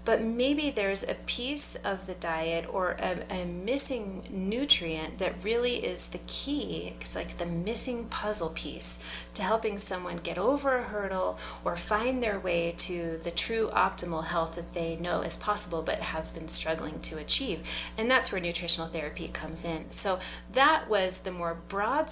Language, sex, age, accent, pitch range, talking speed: English, female, 30-49, American, 165-210 Hz, 175 wpm